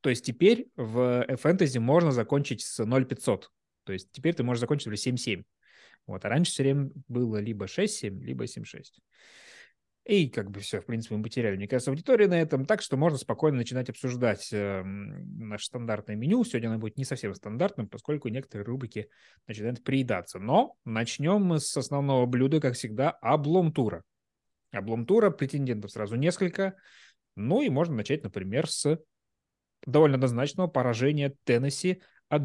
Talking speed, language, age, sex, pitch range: 155 wpm, Russian, 20-39, male, 110-150 Hz